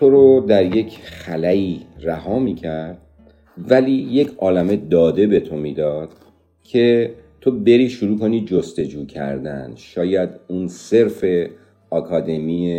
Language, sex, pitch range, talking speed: Persian, male, 80-100 Hz, 115 wpm